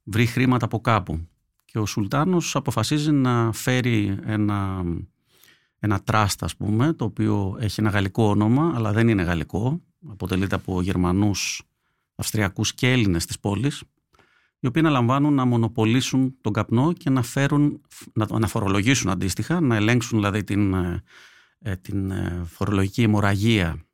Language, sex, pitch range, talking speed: Greek, male, 100-135 Hz, 135 wpm